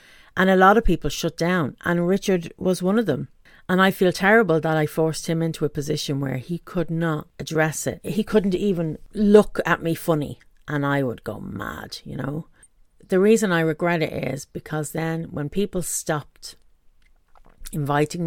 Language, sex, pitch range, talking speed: English, female, 140-180 Hz, 185 wpm